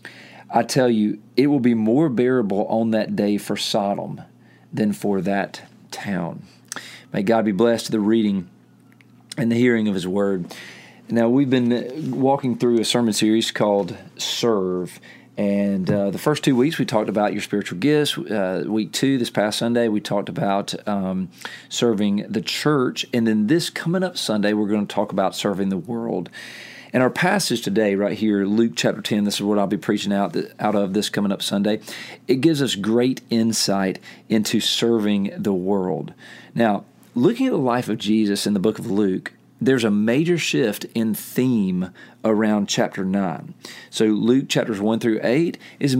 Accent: American